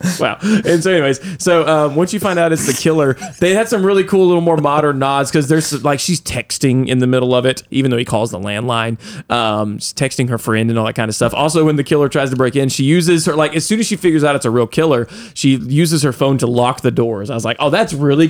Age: 20-39